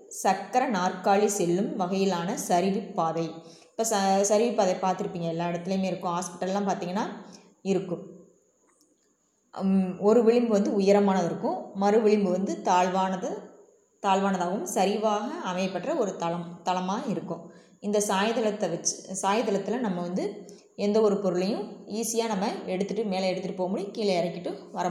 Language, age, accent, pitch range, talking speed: English, 20-39, Indian, 180-210 Hz, 120 wpm